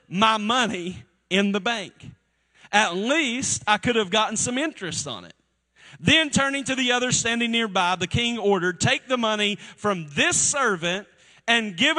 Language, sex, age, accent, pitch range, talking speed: English, male, 40-59, American, 155-240 Hz, 165 wpm